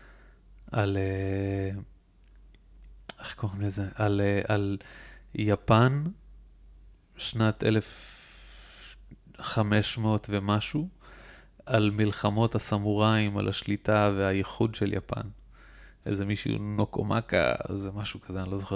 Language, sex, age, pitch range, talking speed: Hebrew, male, 20-39, 100-115 Hz, 85 wpm